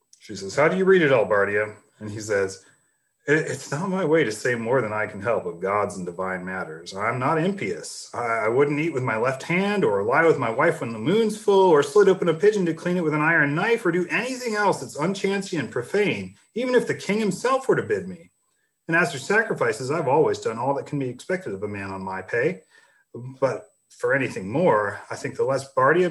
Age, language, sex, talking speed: 40-59, English, male, 240 wpm